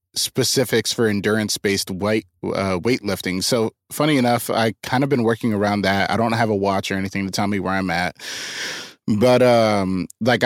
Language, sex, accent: English, male, American